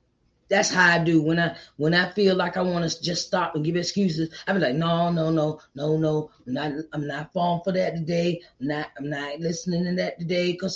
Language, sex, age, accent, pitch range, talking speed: English, female, 30-49, American, 165-215 Hz, 235 wpm